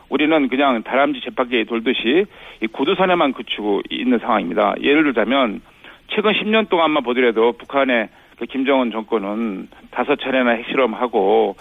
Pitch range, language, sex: 125-190 Hz, Korean, male